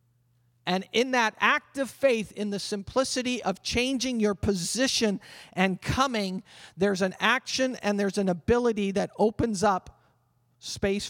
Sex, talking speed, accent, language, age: male, 140 wpm, American, English, 50-69